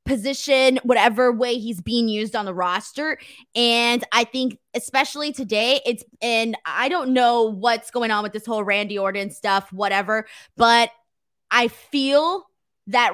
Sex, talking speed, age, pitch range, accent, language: female, 150 wpm, 20-39, 230-275 Hz, American, English